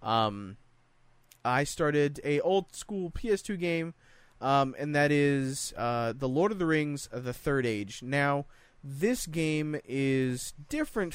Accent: American